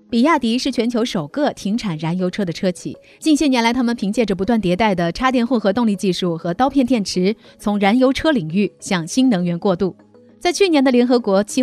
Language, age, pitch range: Chinese, 30-49, 190-265 Hz